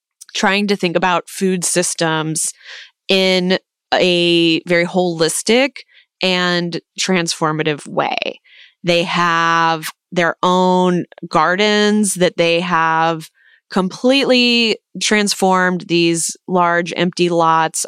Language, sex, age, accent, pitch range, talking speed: English, female, 20-39, American, 165-185 Hz, 90 wpm